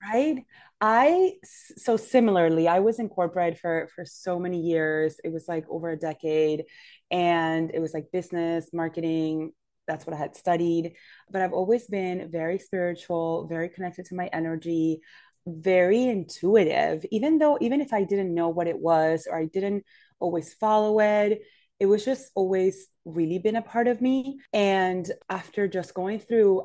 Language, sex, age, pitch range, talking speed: English, female, 20-39, 160-195 Hz, 165 wpm